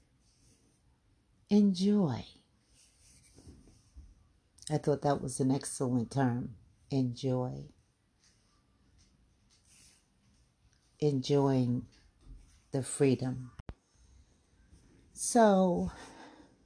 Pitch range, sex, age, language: 120-160 Hz, female, 60-79, English